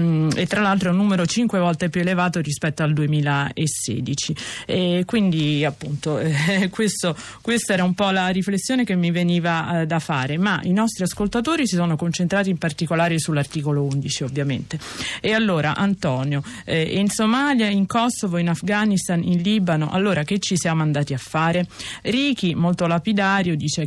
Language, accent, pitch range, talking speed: Italian, native, 150-195 Hz, 165 wpm